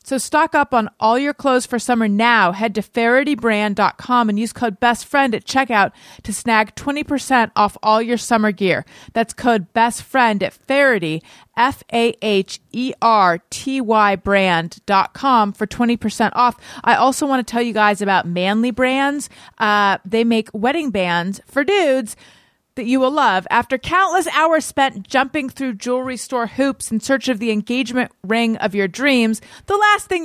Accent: American